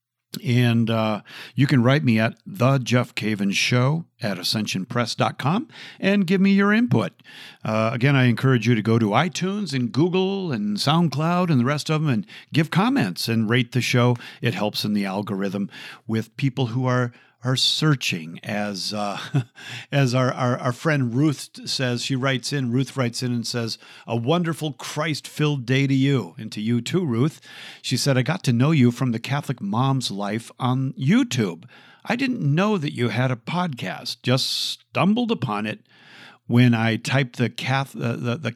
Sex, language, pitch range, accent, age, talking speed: male, English, 115-145 Hz, American, 50-69, 175 wpm